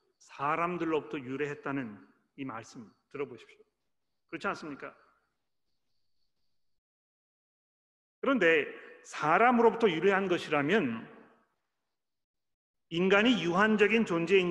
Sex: male